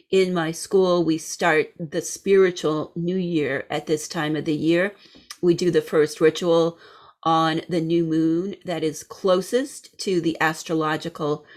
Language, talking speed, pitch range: English, 155 wpm, 165-200 Hz